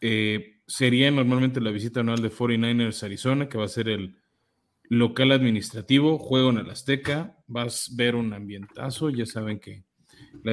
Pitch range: 110-130 Hz